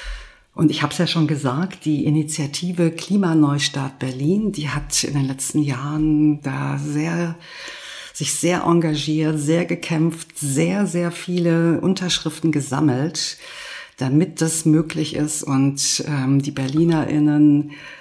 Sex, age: female, 50-69